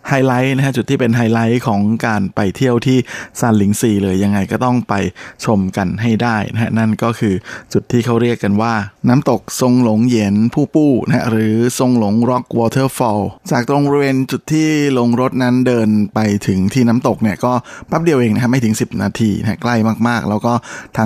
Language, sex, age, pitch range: Thai, male, 20-39, 105-120 Hz